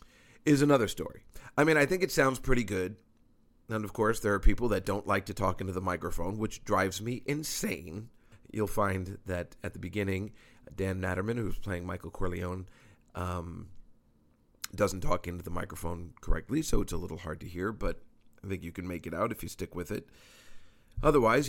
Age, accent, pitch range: 40-59, American, 95-115 Hz